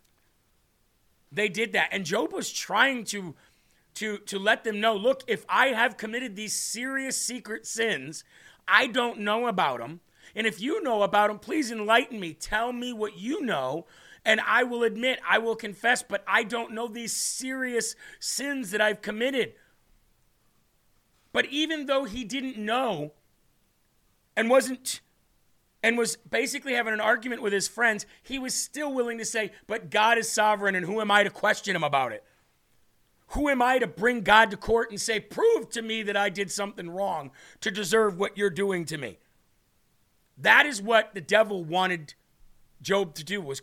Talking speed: 175 wpm